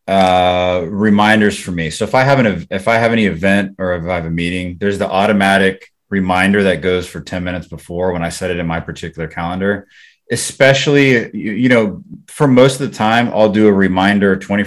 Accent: American